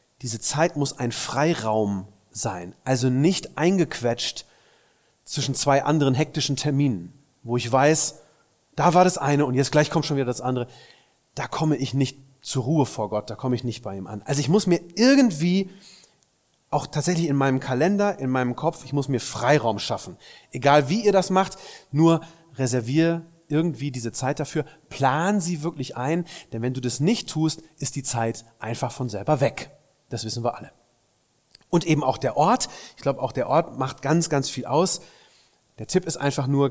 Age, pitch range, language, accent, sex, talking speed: 30-49, 125-165 Hz, German, German, male, 185 wpm